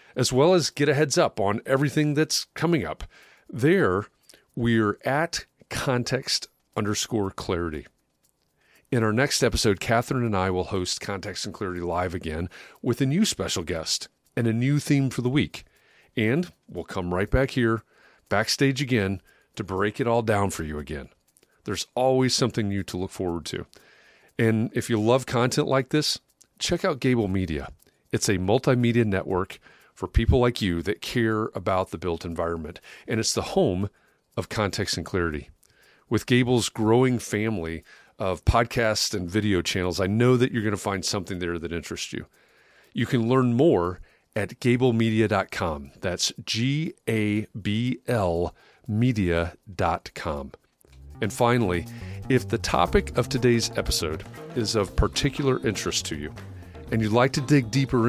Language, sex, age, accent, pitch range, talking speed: English, male, 40-59, American, 95-125 Hz, 160 wpm